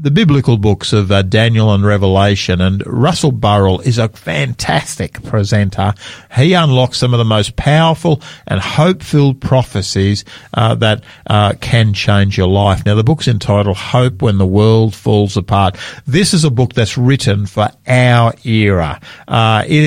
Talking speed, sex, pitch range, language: 160 wpm, male, 105-145 Hz, English